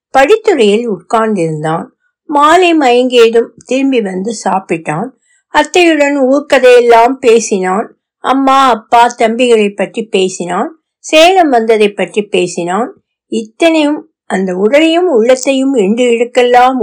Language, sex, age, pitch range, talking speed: Tamil, female, 60-79, 190-275 Hz, 90 wpm